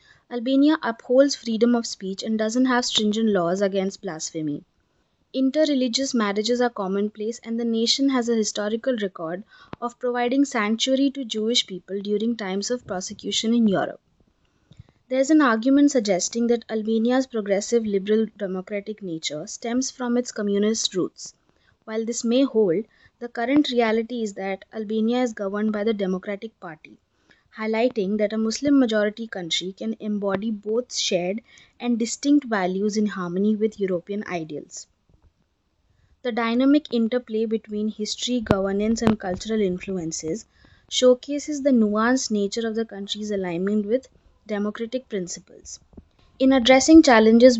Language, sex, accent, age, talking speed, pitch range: English, female, Indian, 20-39, 135 wpm, 200-245 Hz